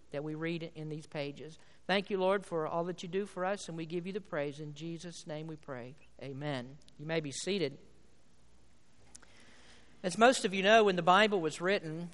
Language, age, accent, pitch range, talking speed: English, 50-69, American, 170-210 Hz, 210 wpm